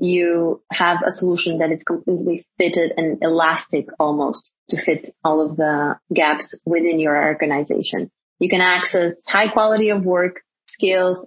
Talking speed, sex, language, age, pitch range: 150 wpm, female, English, 30-49, 160-185 Hz